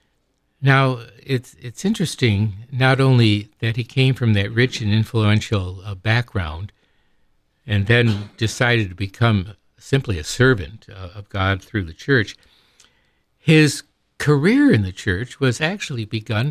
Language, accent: English, American